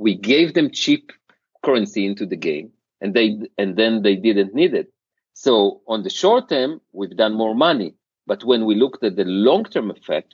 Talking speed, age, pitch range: 190 wpm, 40-59, 105-145 Hz